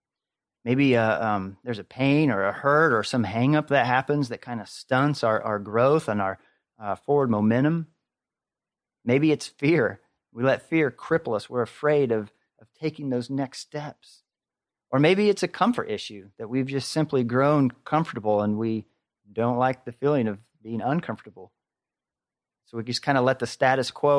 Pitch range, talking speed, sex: 110-145 Hz, 180 wpm, male